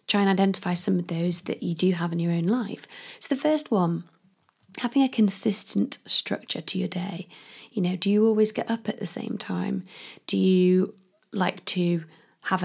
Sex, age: female, 20-39